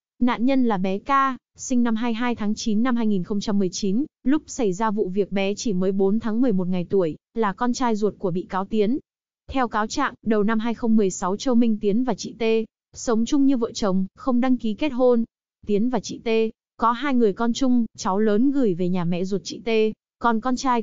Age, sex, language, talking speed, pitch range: 20-39, female, Vietnamese, 220 wpm, 205-245 Hz